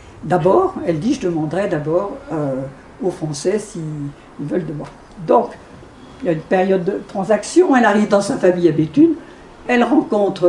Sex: female